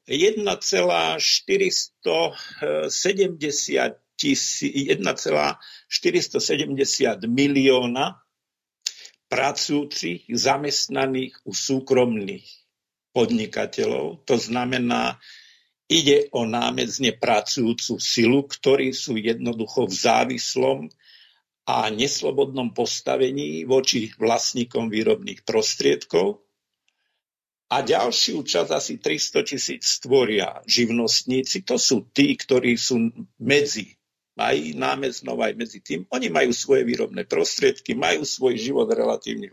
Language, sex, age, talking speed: Slovak, male, 50-69, 85 wpm